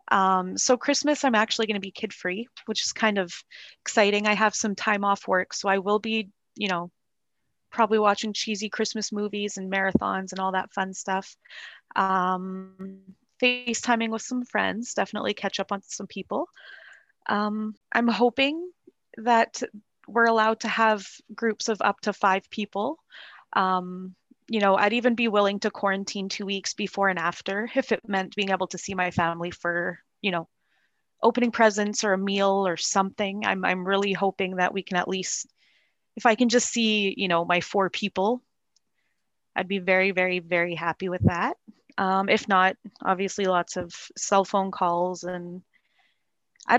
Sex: female